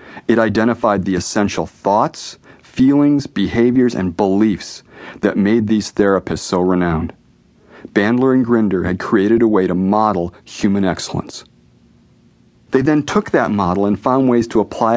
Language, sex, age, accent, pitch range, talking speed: English, male, 40-59, American, 95-130 Hz, 145 wpm